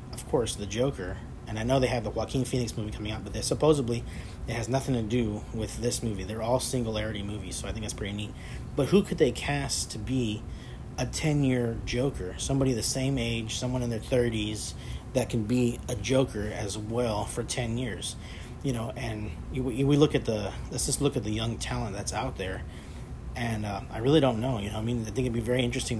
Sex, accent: male, American